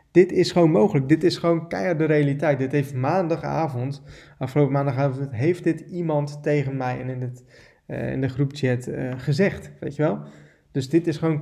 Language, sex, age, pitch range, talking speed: Dutch, male, 20-39, 130-150 Hz, 185 wpm